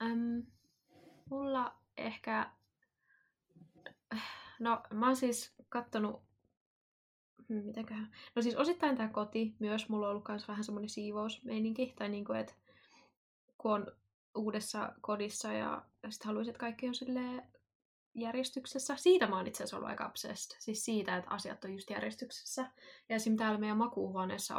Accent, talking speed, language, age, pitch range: native, 140 wpm, Finnish, 20-39, 205-240 Hz